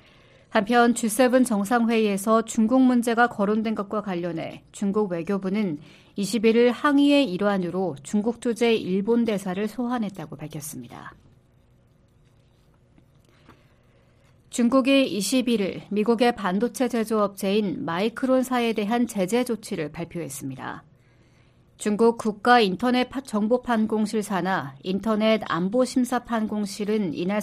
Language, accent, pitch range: Korean, native, 195-245 Hz